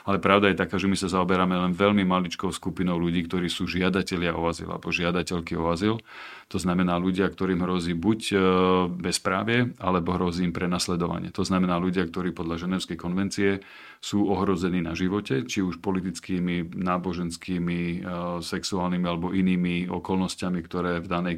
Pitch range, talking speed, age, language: 85-95 Hz, 155 wpm, 40-59, Slovak